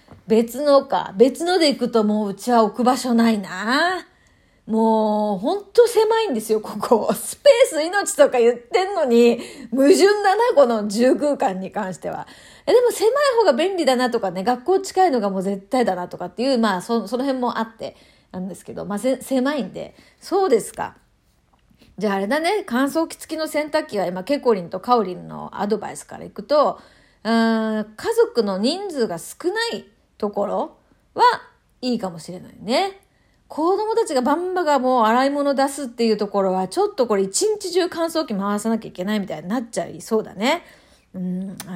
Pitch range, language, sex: 210-315 Hz, Japanese, female